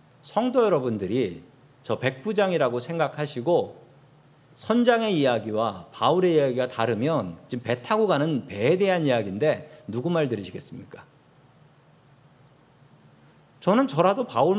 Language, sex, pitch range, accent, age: Korean, male, 135-190 Hz, native, 40-59